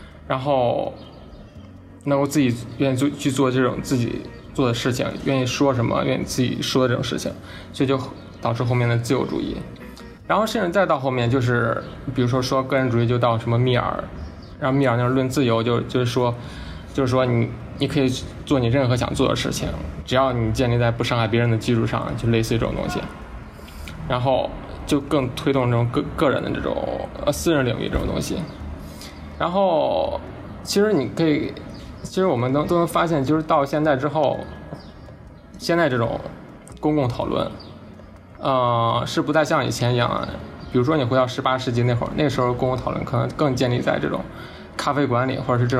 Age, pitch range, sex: 20-39, 115-140 Hz, male